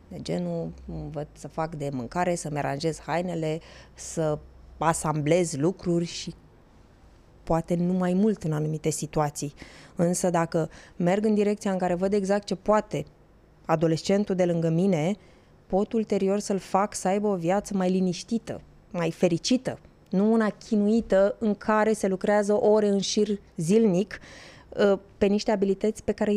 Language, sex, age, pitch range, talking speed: Romanian, female, 20-39, 175-215 Hz, 145 wpm